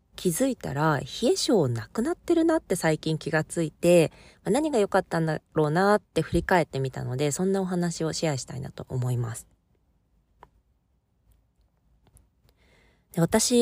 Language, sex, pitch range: Japanese, female, 130-195 Hz